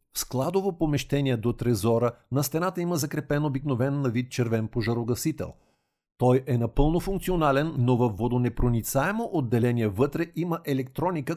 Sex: male